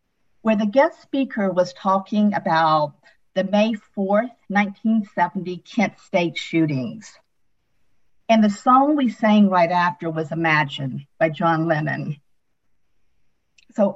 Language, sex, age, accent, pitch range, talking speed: English, female, 50-69, American, 180-230 Hz, 115 wpm